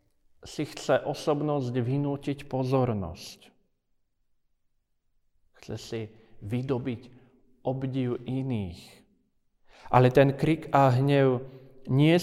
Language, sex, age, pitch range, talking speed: Slovak, male, 40-59, 115-150 Hz, 80 wpm